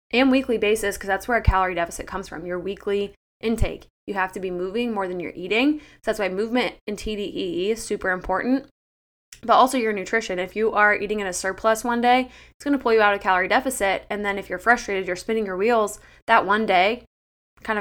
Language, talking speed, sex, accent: English, 225 wpm, female, American